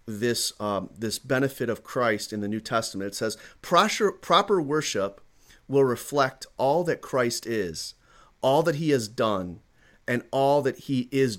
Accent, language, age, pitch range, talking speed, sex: American, English, 40-59, 110-150 Hz, 160 wpm, male